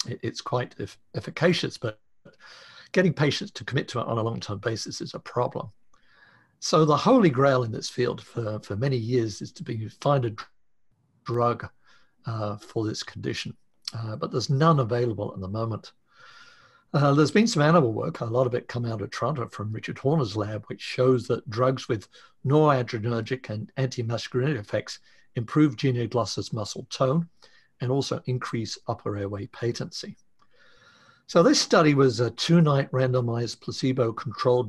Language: English